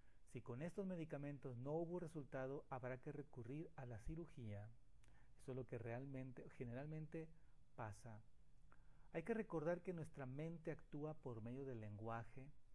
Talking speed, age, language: 145 wpm, 40-59, Spanish